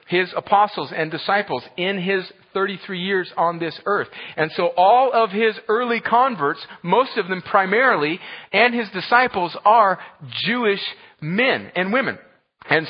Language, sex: English, male